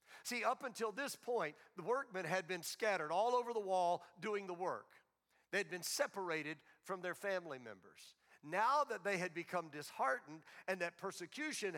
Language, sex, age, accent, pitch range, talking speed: English, male, 50-69, American, 180-220 Hz, 175 wpm